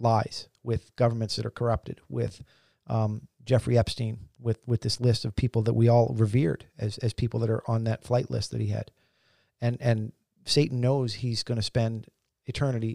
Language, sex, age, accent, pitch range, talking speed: English, male, 40-59, American, 110-125 Hz, 190 wpm